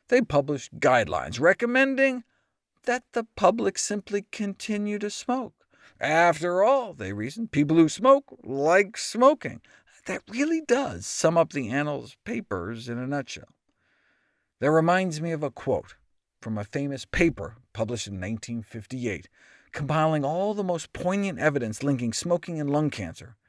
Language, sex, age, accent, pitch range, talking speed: English, male, 50-69, American, 120-180 Hz, 140 wpm